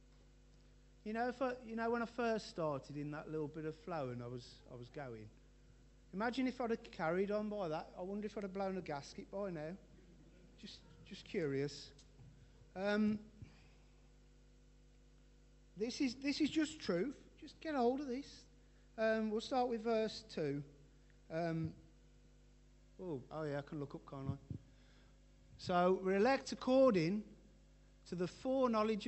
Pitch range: 135-210 Hz